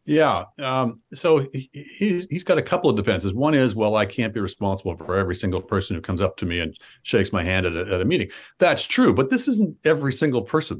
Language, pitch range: English, 110-165 Hz